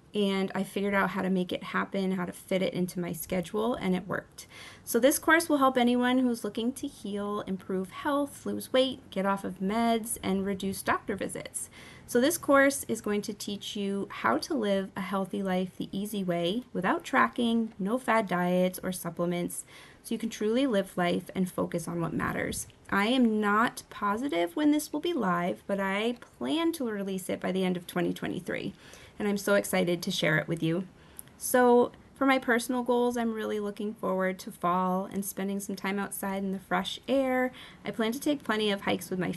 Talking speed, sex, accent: 205 wpm, female, American